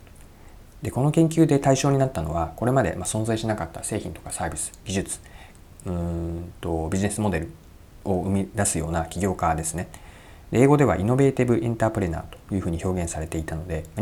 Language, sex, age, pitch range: Japanese, male, 40-59, 85-110 Hz